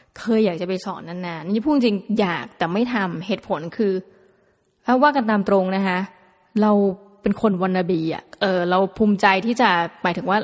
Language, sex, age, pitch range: Thai, female, 20-39, 180-225 Hz